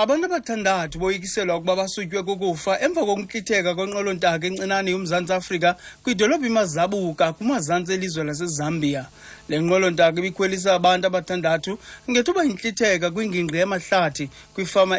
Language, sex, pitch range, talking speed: English, male, 155-190 Hz, 130 wpm